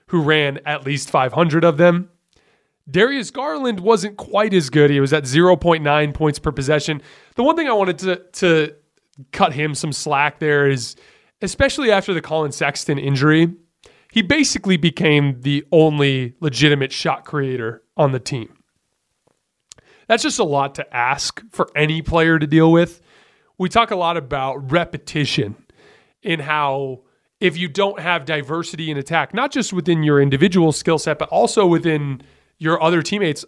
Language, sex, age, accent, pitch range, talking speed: English, male, 30-49, American, 145-185 Hz, 160 wpm